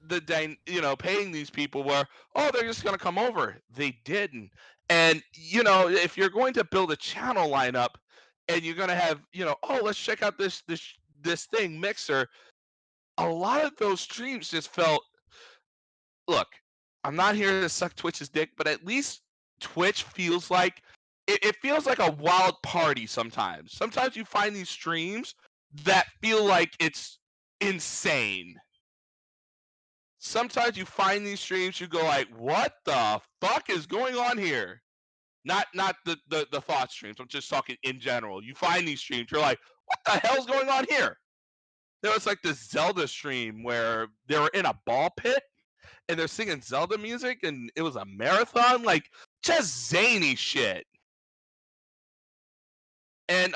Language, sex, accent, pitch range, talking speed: English, male, American, 145-205 Hz, 165 wpm